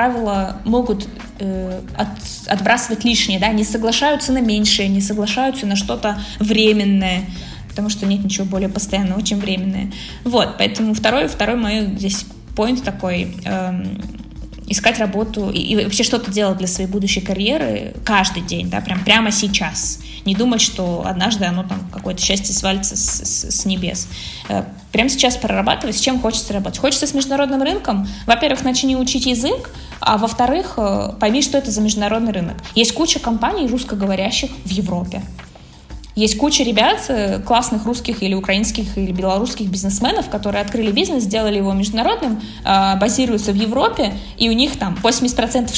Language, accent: Russian, native